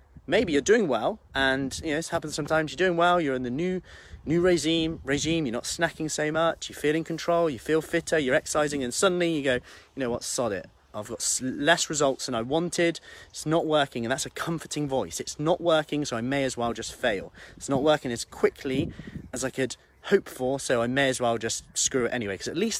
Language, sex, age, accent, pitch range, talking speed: English, male, 30-49, British, 125-165 Hz, 235 wpm